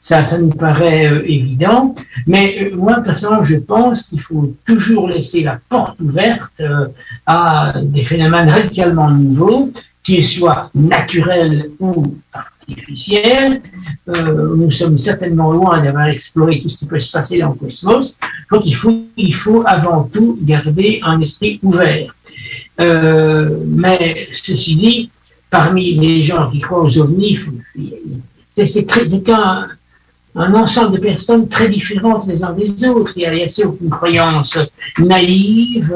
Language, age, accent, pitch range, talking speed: French, 60-79, French, 155-195 Hz, 150 wpm